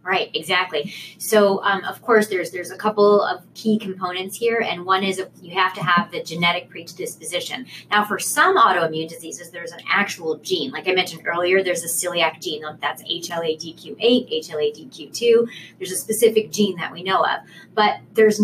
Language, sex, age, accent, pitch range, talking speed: English, female, 30-49, American, 170-210 Hz, 175 wpm